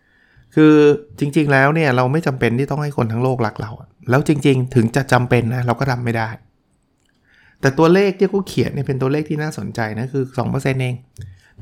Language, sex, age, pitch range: Thai, male, 60-79, 115-145 Hz